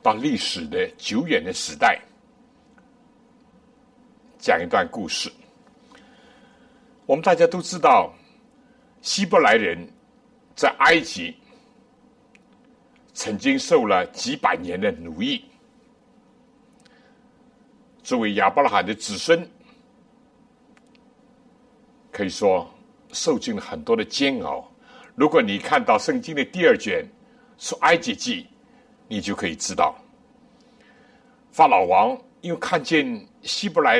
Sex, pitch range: male, 245-250 Hz